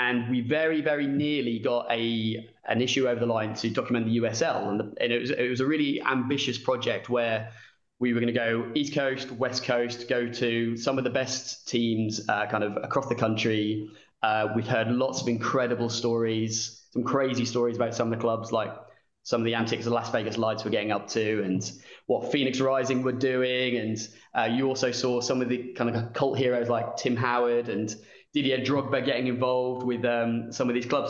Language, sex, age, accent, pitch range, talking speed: English, male, 20-39, British, 115-130 Hz, 210 wpm